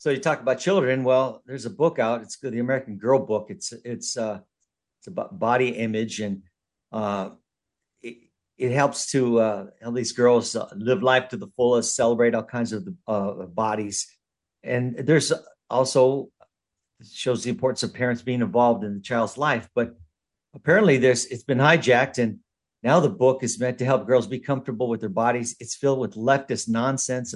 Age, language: 50-69, English